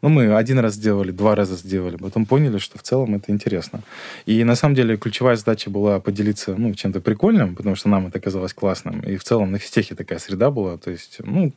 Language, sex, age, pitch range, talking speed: Russian, male, 20-39, 95-110 Hz, 225 wpm